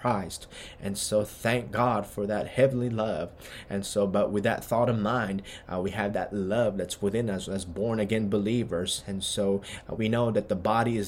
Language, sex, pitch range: English, male, 100-115 Hz